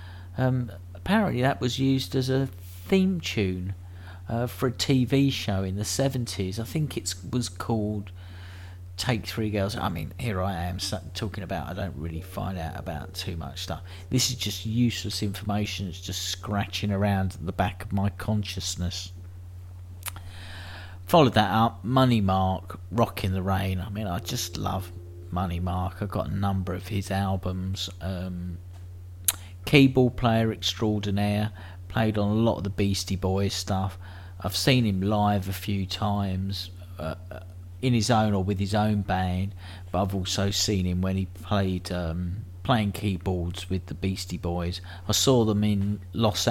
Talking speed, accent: 165 wpm, British